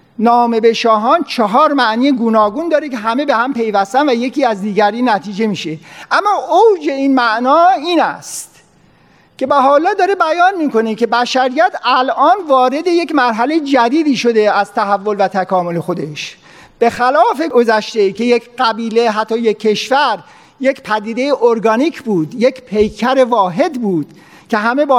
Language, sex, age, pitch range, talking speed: Persian, male, 50-69, 215-270 Hz, 150 wpm